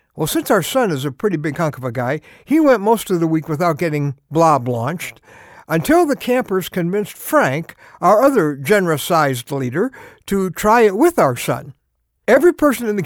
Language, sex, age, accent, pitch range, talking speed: English, male, 60-79, American, 155-240 Hz, 190 wpm